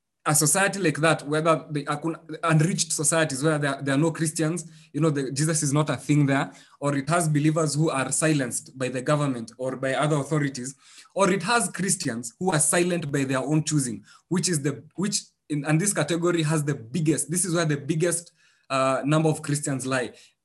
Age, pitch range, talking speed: 20-39, 135-165 Hz, 200 wpm